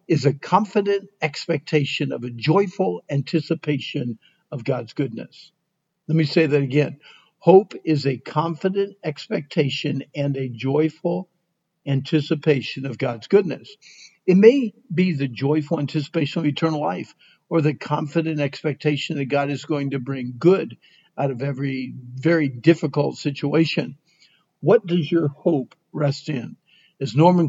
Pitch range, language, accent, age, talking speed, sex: 140-175 Hz, English, American, 60-79, 135 wpm, male